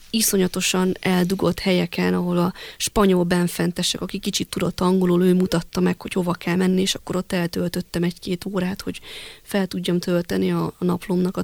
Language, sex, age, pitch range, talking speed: Hungarian, female, 20-39, 180-205 Hz, 165 wpm